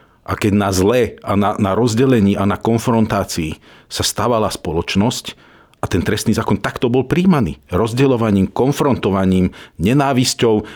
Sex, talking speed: male, 135 wpm